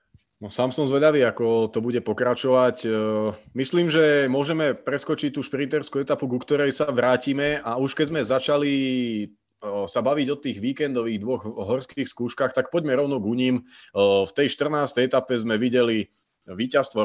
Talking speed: 155 wpm